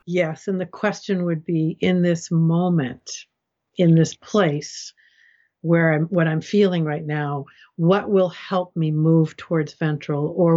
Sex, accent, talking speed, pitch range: female, American, 155 wpm, 155-190 Hz